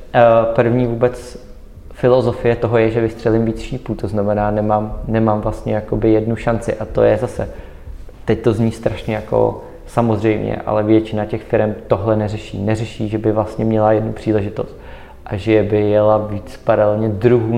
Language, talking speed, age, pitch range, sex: Czech, 160 wpm, 20-39, 100-115 Hz, male